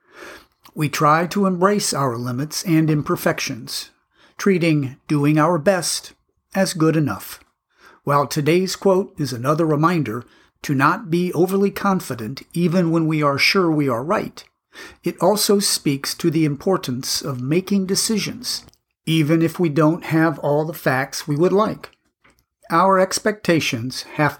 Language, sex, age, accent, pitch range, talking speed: English, male, 50-69, American, 145-185 Hz, 140 wpm